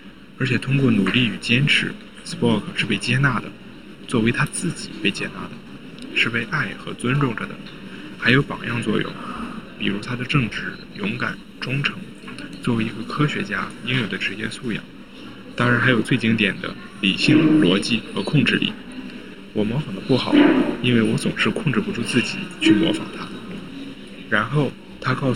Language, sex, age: Chinese, male, 20-39